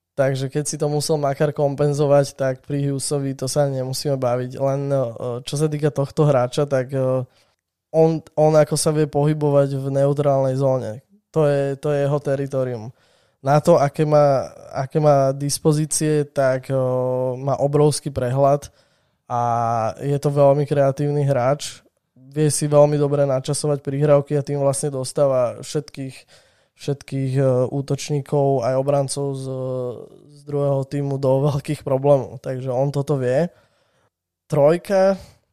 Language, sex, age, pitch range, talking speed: Slovak, male, 20-39, 135-145 Hz, 135 wpm